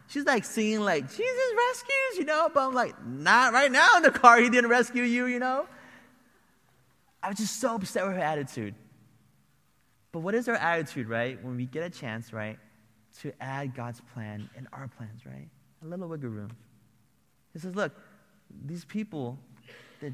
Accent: American